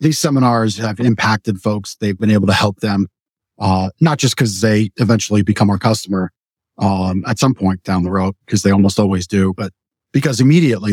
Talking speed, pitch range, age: 190 wpm, 100-125 Hz, 40-59